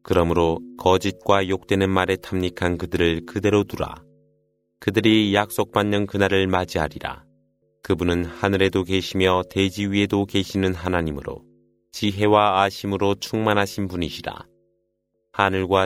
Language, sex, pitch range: Korean, male, 90-105 Hz